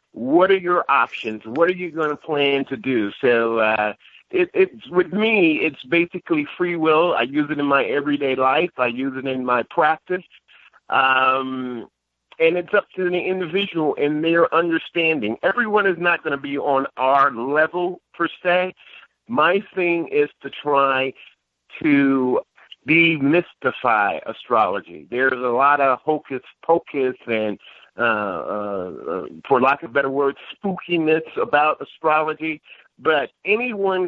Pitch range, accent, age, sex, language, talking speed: 135-175 Hz, American, 50-69, male, English, 150 wpm